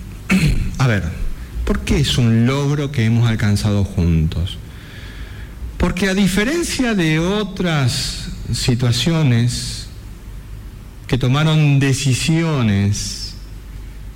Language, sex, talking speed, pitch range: Spanish, male, 85 wpm, 100-130 Hz